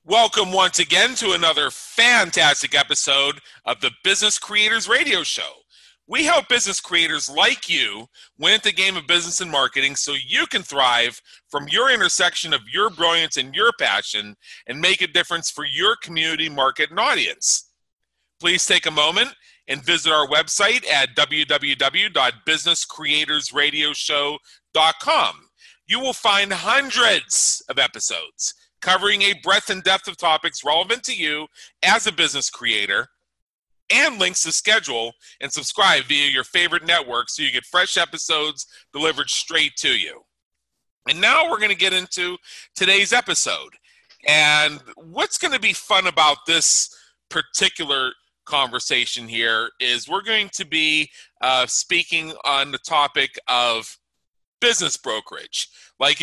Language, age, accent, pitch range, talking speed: English, 40-59, American, 145-195 Hz, 140 wpm